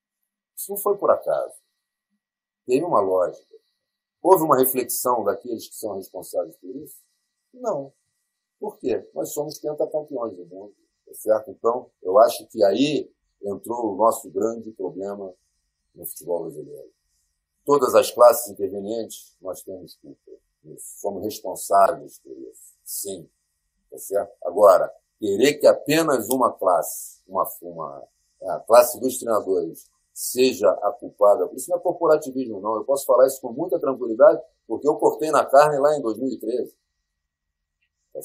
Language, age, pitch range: Portuguese, 50-69, 110-185 Hz